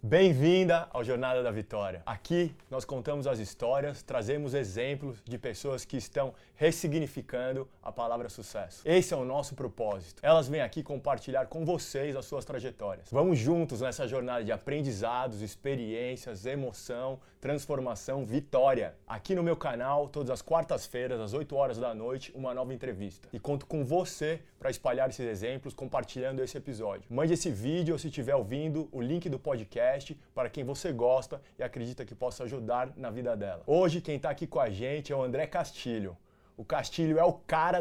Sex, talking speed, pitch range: male, 175 wpm, 130-160 Hz